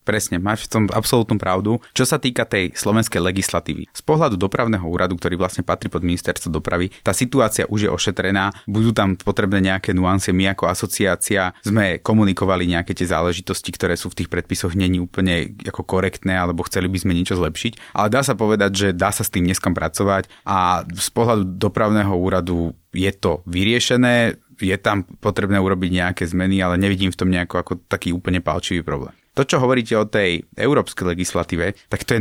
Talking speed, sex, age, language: 185 wpm, male, 30-49, Slovak